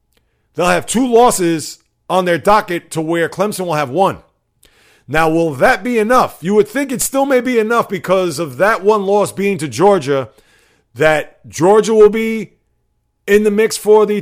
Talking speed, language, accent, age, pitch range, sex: 180 wpm, English, American, 40-59, 140-185 Hz, male